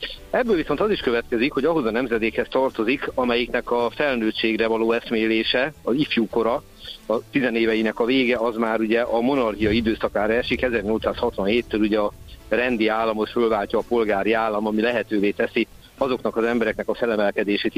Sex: male